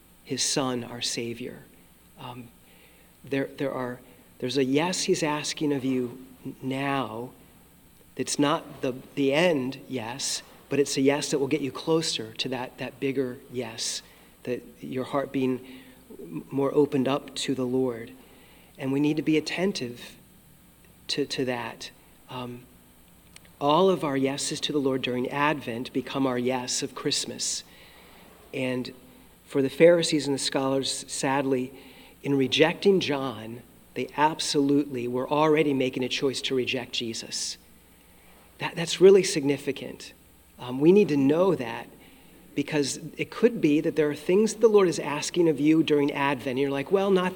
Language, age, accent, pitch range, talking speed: English, 40-59, American, 130-155 Hz, 155 wpm